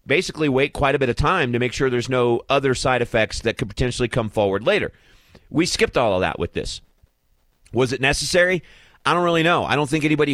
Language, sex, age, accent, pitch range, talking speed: English, male, 30-49, American, 105-145 Hz, 225 wpm